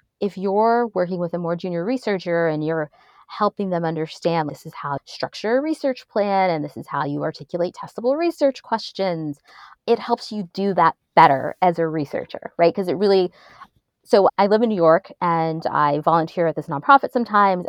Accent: American